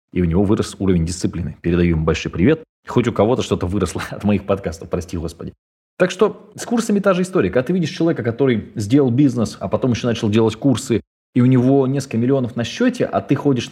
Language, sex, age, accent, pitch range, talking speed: Russian, male, 20-39, native, 90-130 Hz, 220 wpm